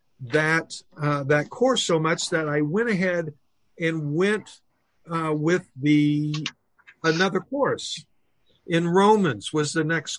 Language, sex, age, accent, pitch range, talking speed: English, male, 50-69, American, 145-190 Hz, 130 wpm